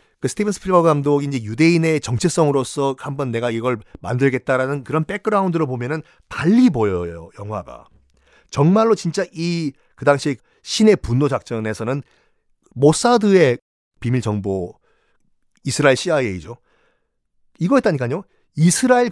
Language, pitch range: Korean, 125-200 Hz